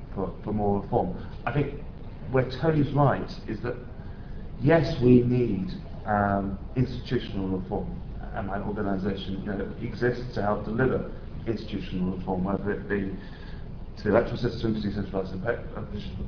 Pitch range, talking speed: 100-135 Hz, 135 wpm